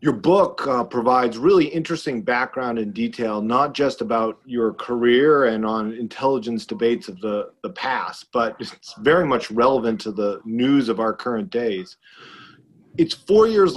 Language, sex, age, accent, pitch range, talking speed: English, male, 40-59, American, 115-140 Hz, 160 wpm